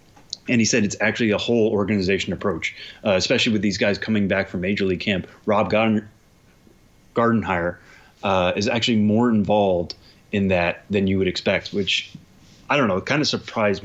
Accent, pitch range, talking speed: American, 95-105 Hz, 180 wpm